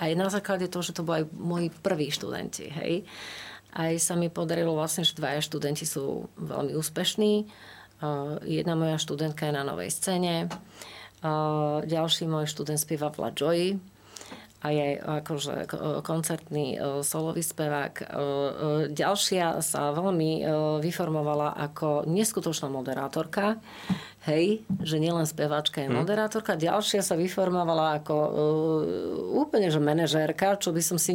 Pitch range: 150-175 Hz